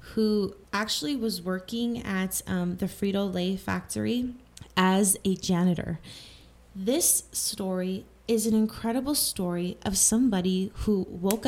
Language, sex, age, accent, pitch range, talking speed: English, female, 20-39, American, 185-220 Hz, 115 wpm